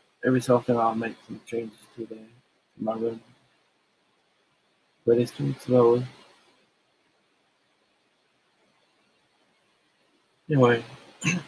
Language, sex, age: English, male, 50-69